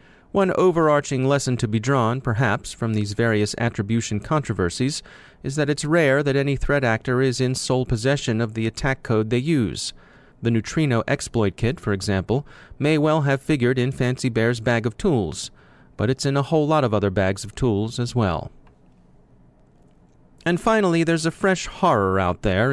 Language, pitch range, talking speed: English, 110-135 Hz, 175 wpm